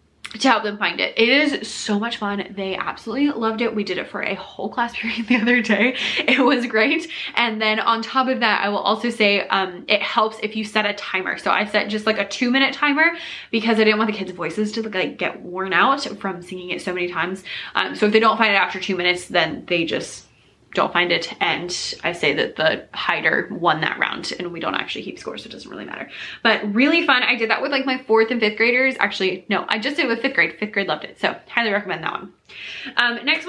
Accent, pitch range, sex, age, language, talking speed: American, 205-265 Hz, female, 20-39, English, 255 wpm